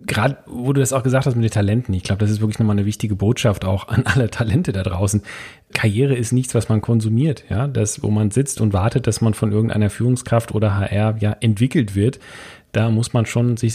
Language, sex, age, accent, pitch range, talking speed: German, male, 40-59, German, 110-130 Hz, 230 wpm